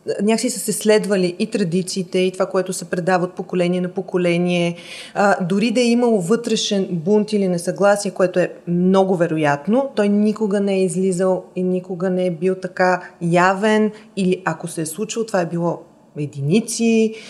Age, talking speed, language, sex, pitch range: 30-49, 165 wpm, Bulgarian, female, 185-220 Hz